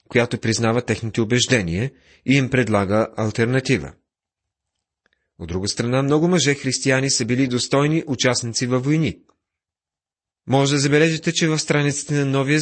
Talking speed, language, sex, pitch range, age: 130 wpm, Bulgarian, male, 105-140 Hz, 30-49